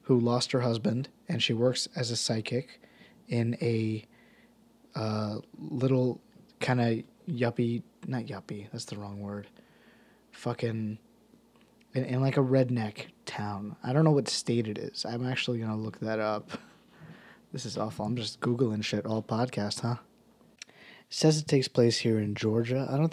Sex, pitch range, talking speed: male, 115-140 Hz, 165 wpm